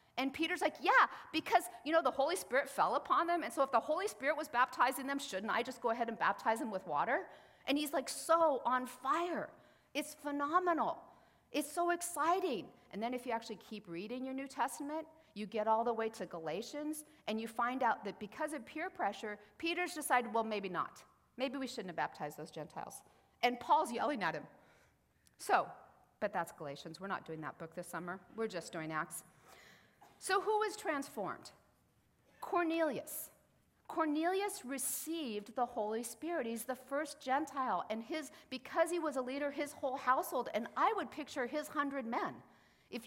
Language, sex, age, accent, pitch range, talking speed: English, female, 40-59, American, 220-310 Hz, 185 wpm